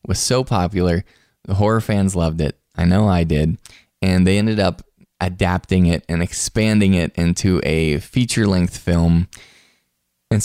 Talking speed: 150 wpm